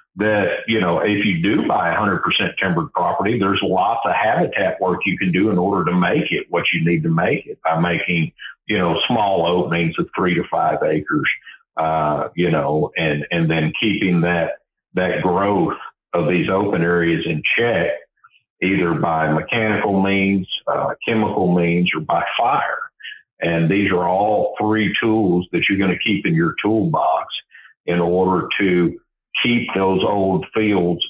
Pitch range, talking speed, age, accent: 85-95 Hz, 170 wpm, 50-69, American